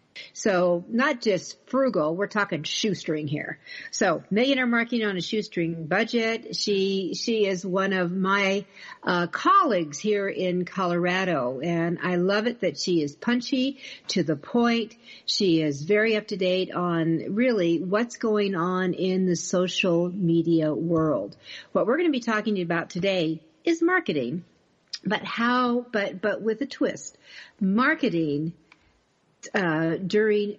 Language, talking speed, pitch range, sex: English, 150 wpm, 175-225 Hz, female